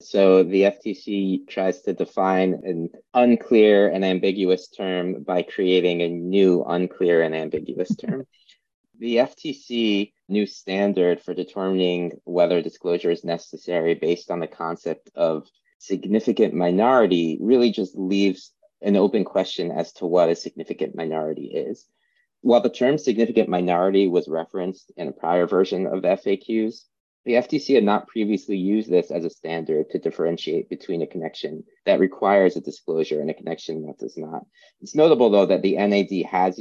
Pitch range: 90-105 Hz